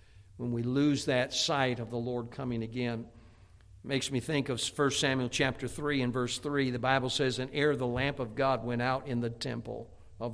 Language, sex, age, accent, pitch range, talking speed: English, male, 60-79, American, 100-135 Hz, 215 wpm